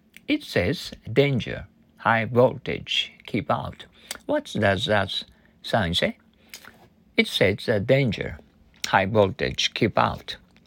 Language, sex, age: Japanese, male, 60-79